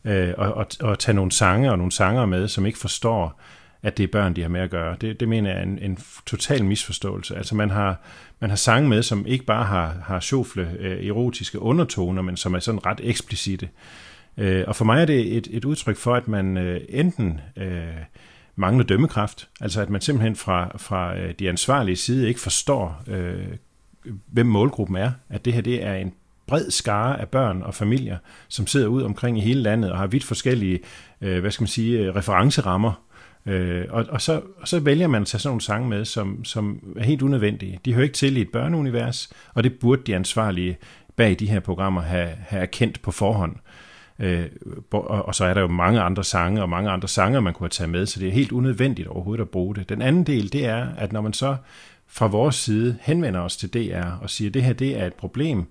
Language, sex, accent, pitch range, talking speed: Danish, male, native, 95-120 Hz, 205 wpm